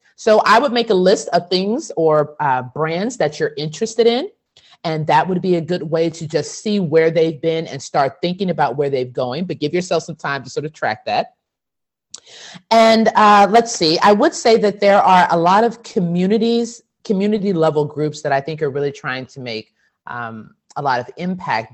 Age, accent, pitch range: 30-49, American, 130-180 Hz